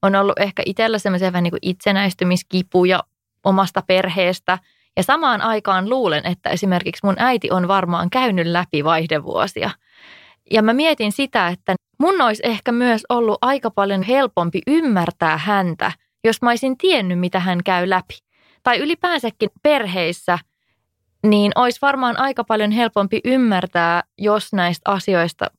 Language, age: English, 20-39